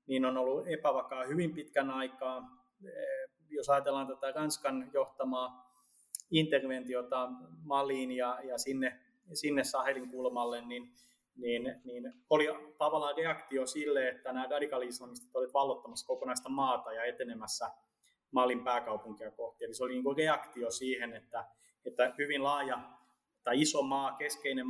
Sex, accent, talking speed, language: male, native, 125 wpm, Finnish